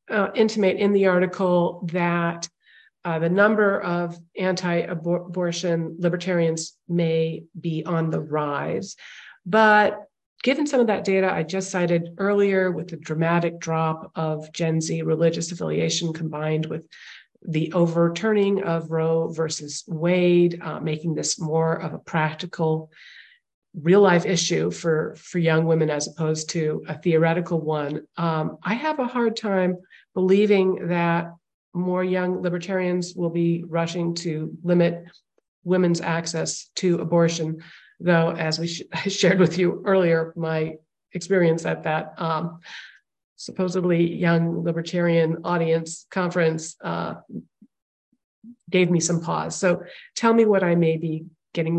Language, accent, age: English, American, 40-59